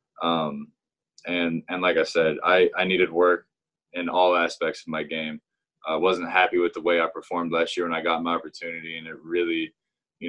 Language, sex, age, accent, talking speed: English, male, 20-39, American, 205 wpm